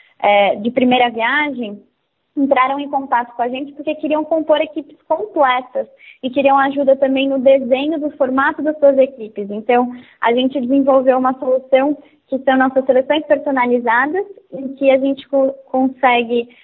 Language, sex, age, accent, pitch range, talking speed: Portuguese, female, 20-39, Brazilian, 255-295 Hz, 150 wpm